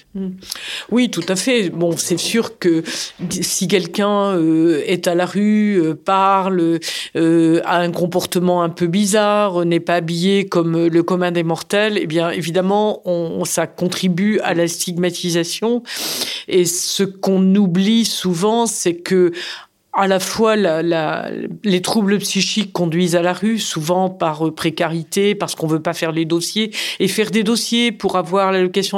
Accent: French